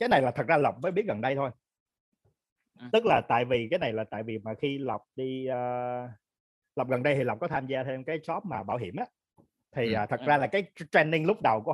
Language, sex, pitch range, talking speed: Vietnamese, male, 110-175 Hz, 255 wpm